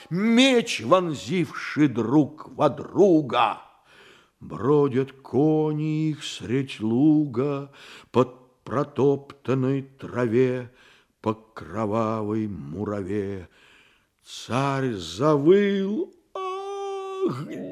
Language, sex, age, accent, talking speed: Russian, male, 50-69, native, 65 wpm